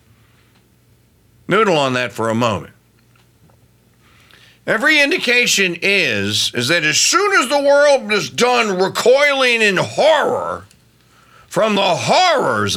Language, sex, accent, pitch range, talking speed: English, male, American, 120-200 Hz, 115 wpm